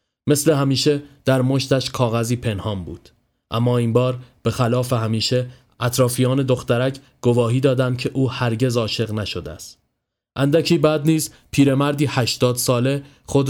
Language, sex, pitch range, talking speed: Persian, male, 115-135 Hz, 135 wpm